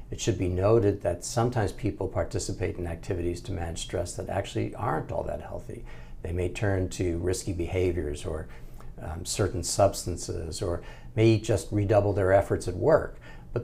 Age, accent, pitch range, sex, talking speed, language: 60-79, American, 90-110 Hz, male, 165 wpm, English